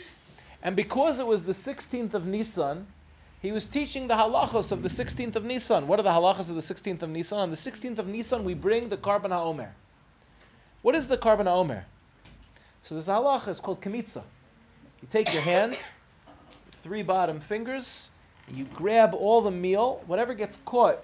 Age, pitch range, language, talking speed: 30-49, 165-235 Hz, English, 180 wpm